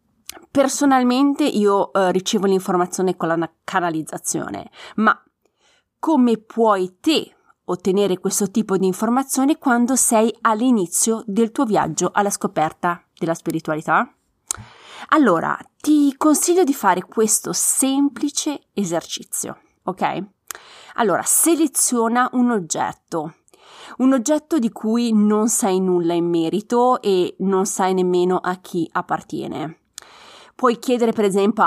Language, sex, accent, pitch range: Italian, female, native, 180-260 Hz